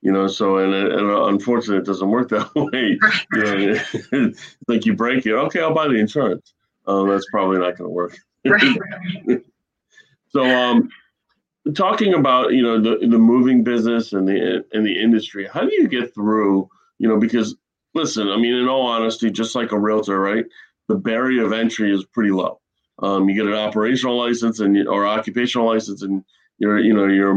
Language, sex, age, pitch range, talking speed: English, male, 30-49, 100-115 Hz, 185 wpm